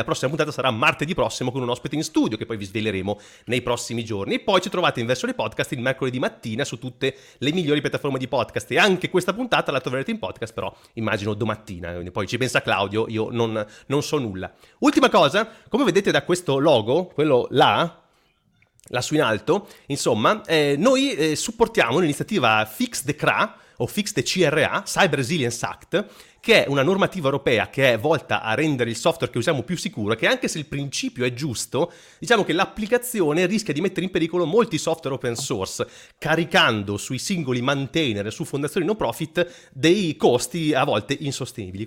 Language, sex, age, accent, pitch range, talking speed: Italian, male, 30-49, native, 120-170 Hz, 190 wpm